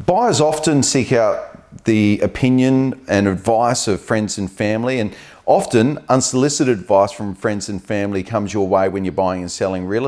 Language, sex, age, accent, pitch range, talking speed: English, male, 40-59, Australian, 105-140 Hz, 175 wpm